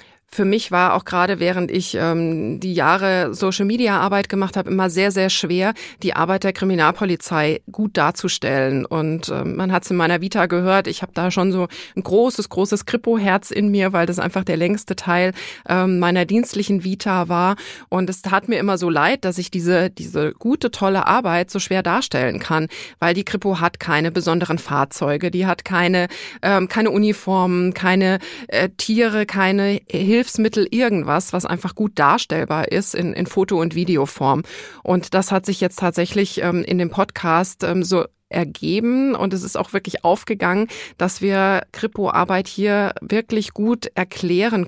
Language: German